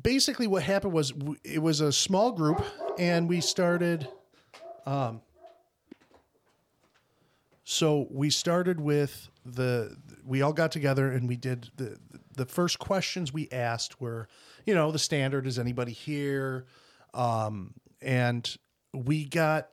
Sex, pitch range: male, 125-165 Hz